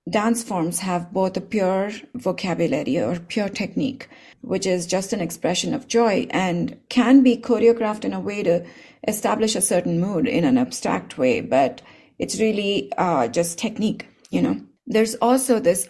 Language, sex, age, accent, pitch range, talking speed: English, female, 30-49, Indian, 185-235 Hz, 165 wpm